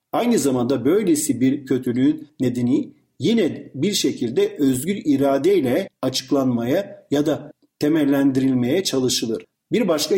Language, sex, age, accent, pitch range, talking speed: Turkish, male, 50-69, native, 130-200 Hz, 105 wpm